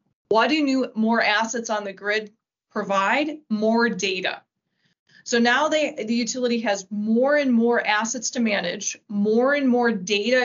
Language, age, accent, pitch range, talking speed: English, 20-39, American, 205-245 Hz, 155 wpm